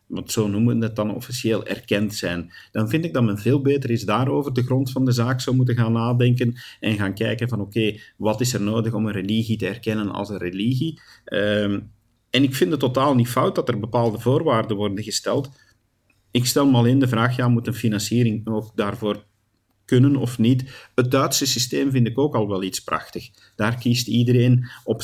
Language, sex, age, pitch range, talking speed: Dutch, male, 50-69, 105-125 Hz, 210 wpm